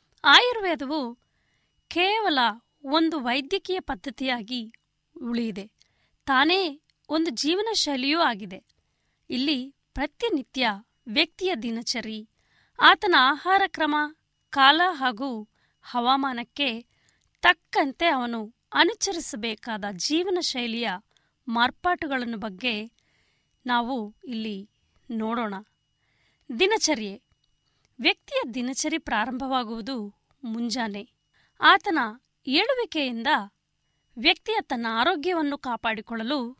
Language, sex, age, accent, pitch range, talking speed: Kannada, female, 20-39, native, 235-330 Hz, 65 wpm